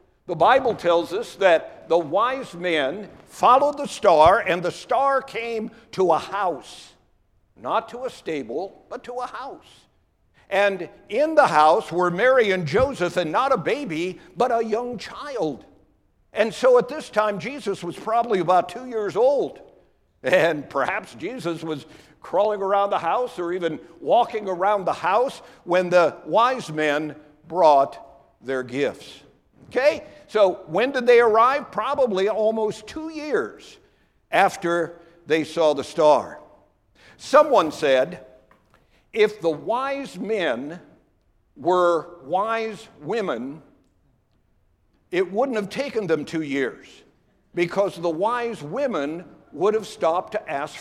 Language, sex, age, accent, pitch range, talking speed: English, male, 60-79, American, 170-255 Hz, 135 wpm